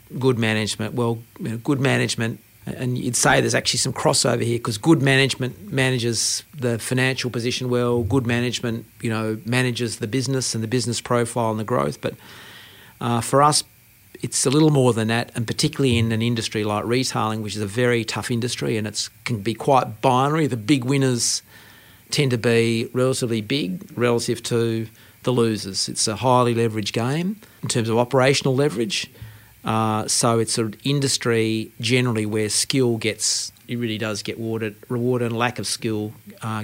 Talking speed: 170 wpm